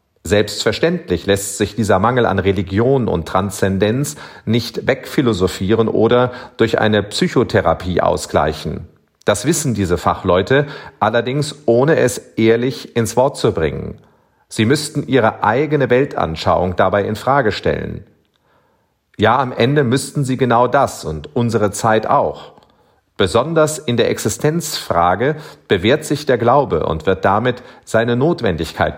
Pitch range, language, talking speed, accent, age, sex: 105-135 Hz, German, 125 wpm, German, 40-59, male